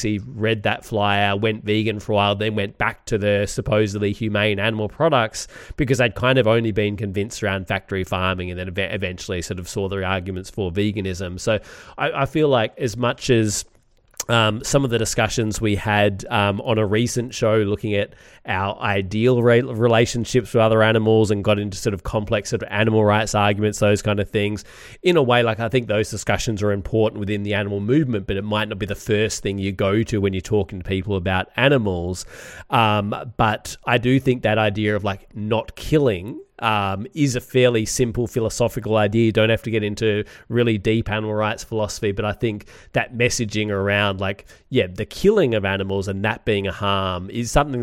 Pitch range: 100-115 Hz